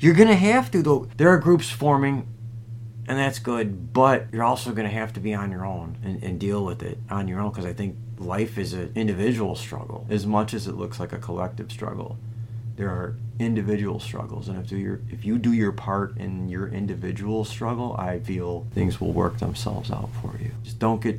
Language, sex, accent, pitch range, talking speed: English, male, American, 105-120 Hz, 215 wpm